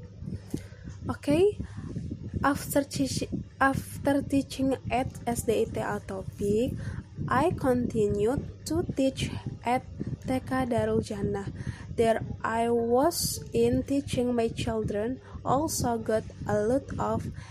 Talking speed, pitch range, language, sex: 95 wpm, 200-260 Hz, Indonesian, female